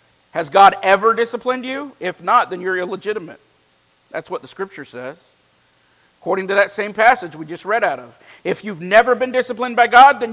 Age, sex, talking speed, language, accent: 50-69, male, 190 wpm, English, American